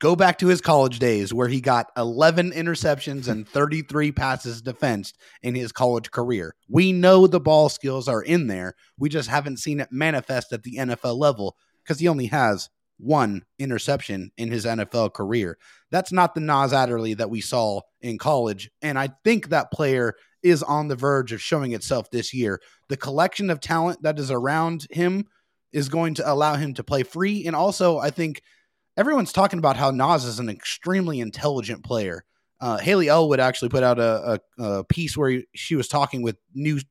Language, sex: English, male